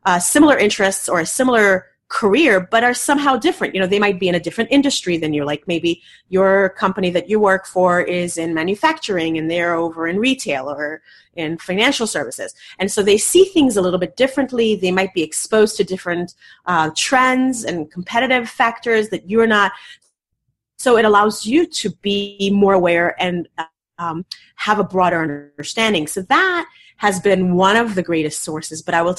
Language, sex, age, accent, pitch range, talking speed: English, female, 30-49, American, 165-220 Hz, 190 wpm